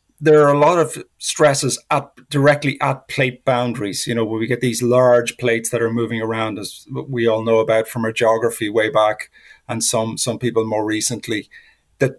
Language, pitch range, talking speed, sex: English, 120-145 Hz, 195 wpm, male